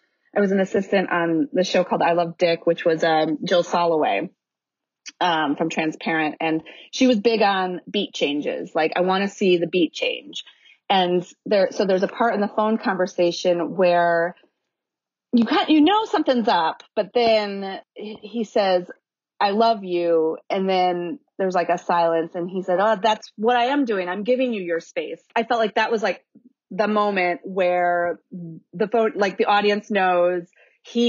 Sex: female